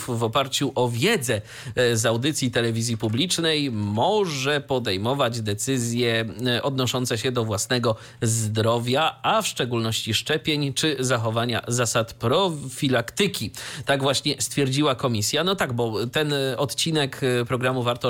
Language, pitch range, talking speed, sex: Polish, 115-145 Hz, 115 wpm, male